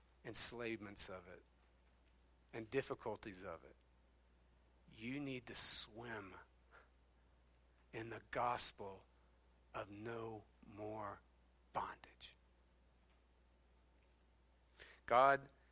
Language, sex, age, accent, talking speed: English, male, 50-69, American, 75 wpm